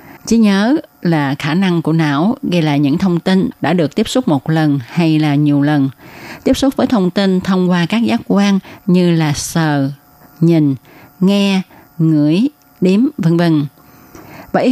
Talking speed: 170 wpm